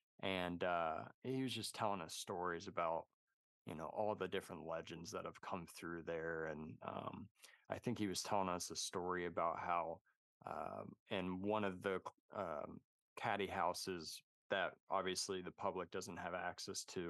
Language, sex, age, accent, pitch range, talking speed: English, male, 20-39, American, 85-105 Hz, 170 wpm